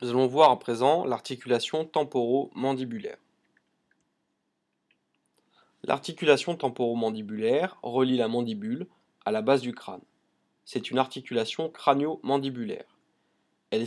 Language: French